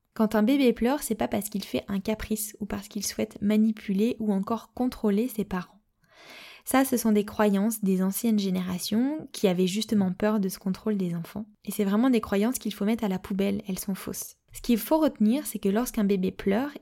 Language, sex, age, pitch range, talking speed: French, female, 20-39, 205-240 Hz, 220 wpm